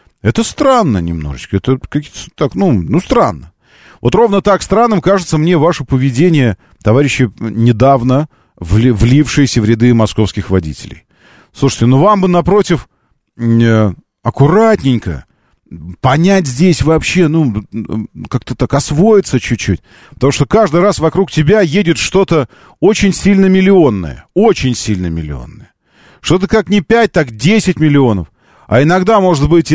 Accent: native